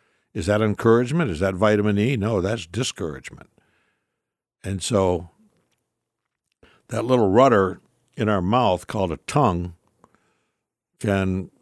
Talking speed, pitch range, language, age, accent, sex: 115 wpm, 95-115 Hz, English, 60-79, American, male